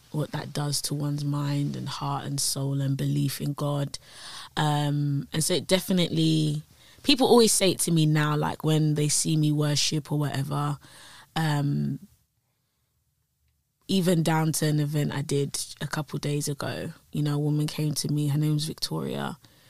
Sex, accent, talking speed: female, British, 175 wpm